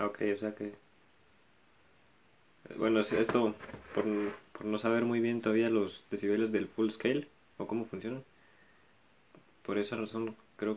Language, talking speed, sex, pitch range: Spanish, 140 wpm, male, 105-120 Hz